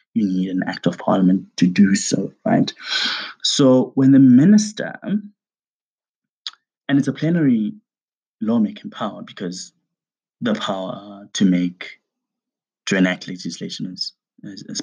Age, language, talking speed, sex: 20-39, English, 115 wpm, male